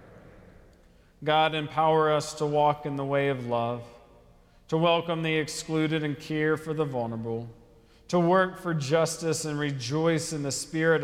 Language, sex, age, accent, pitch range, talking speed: English, male, 40-59, American, 125-160 Hz, 150 wpm